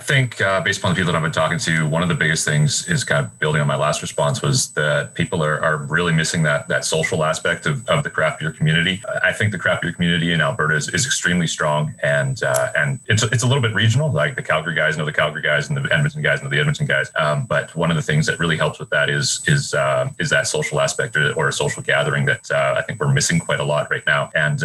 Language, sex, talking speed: English, male, 280 wpm